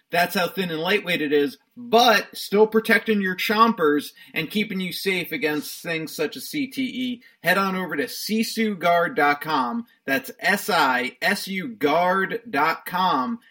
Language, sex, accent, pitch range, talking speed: English, male, American, 160-230 Hz, 125 wpm